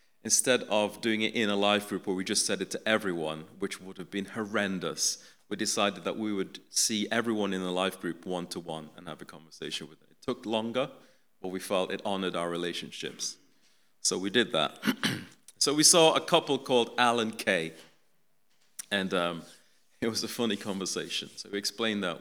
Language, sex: English, male